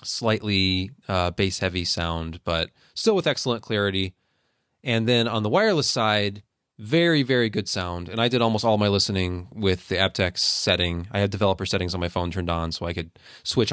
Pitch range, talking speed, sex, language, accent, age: 90-120 Hz, 190 wpm, male, English, American, 20-39